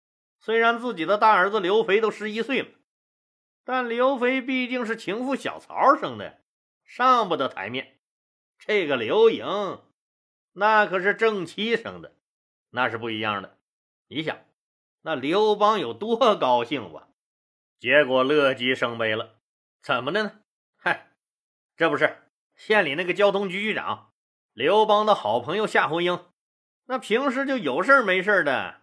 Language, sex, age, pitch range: Chinese, male, 30-49, 175-230 Hz